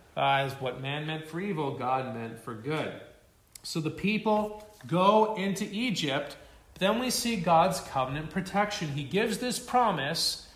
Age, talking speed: 40-59, 160 wpm